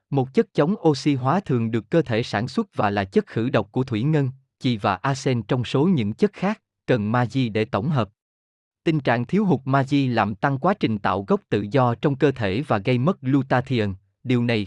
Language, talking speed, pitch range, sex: Vietnamese, 220 wpm, 110-155 Hz, male